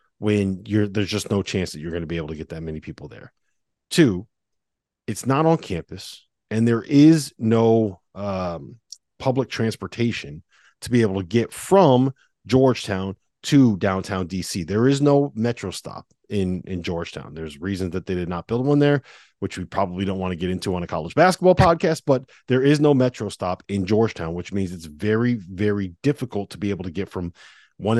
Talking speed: 195 wpm